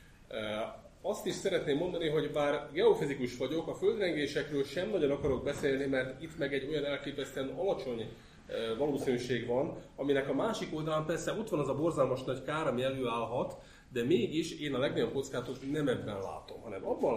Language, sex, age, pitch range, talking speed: Hungarian, male, 30-49, 130-180 Hz, 170 wpm